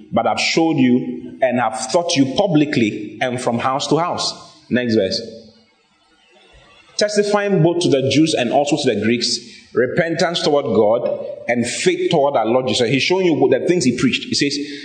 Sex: male